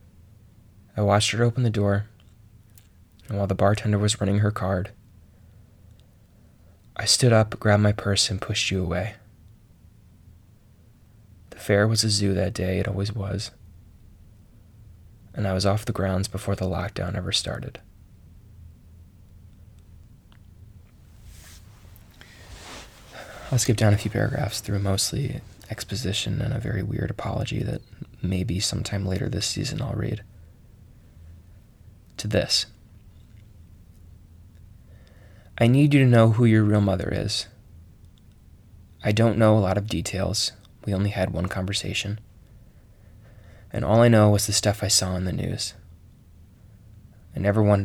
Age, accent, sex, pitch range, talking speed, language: 20-39, American, male, 95-105 Hz, 135 wpm, English